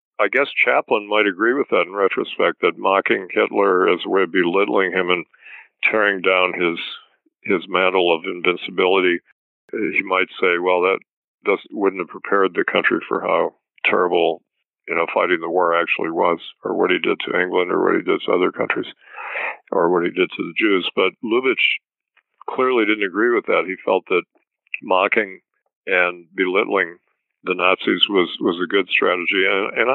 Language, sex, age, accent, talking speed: English, male, 50-69, American, 175 wpm